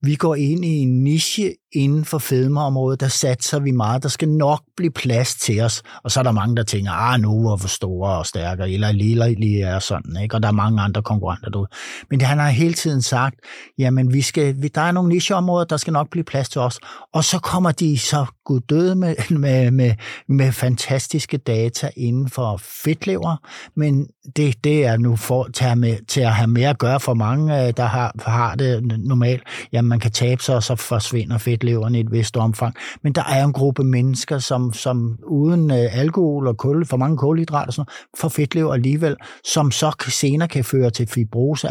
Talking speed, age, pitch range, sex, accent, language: 200 wpm, 60-79, 115-150 Hz, male, native, Danish